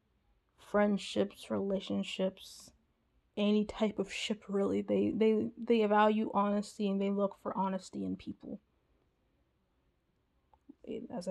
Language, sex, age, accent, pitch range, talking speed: English, female, 20-39, American, 195-230 Hz, 105 wpm